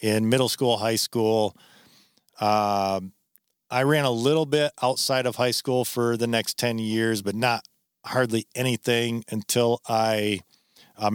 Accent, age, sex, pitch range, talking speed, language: American, 40-59, male, 110-145 Hz, 145 wpm, English